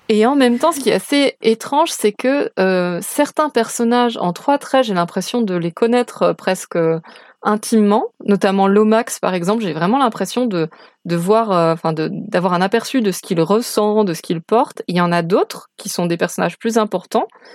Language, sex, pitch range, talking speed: French, female, 190-245 Hz, 200 wpm